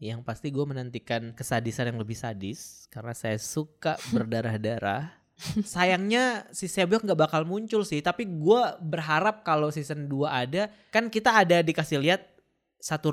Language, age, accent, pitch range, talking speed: Indonesian, 20-39, native, 125-165 Hz, 145 wpm